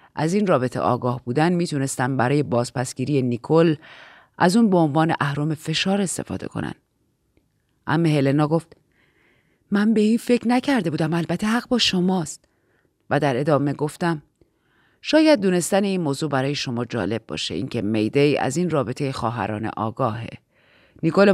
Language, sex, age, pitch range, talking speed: Persian, female, 30-49, 130-200 Hz, 140 wpm